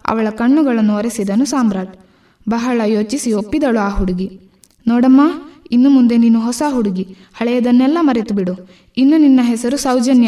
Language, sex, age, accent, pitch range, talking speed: Kannada, female, 20-39, native, 205-255 Hz, 130 wpm